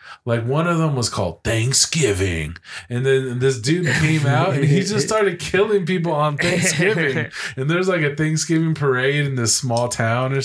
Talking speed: 185 wpm